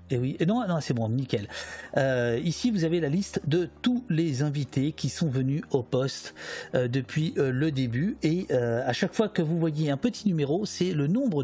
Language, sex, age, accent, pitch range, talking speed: French, male, 50-69, French, 125-160 Hz, 215 wpm